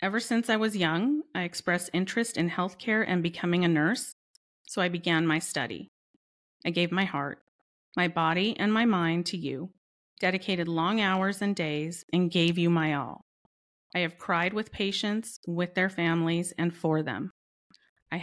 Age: 40-59